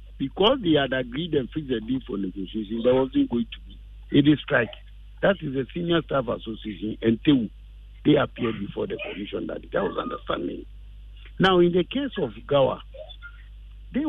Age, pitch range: 50-69, 110-165 Hz